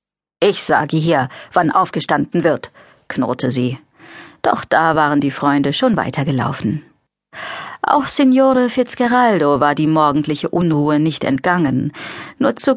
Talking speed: 120 wpm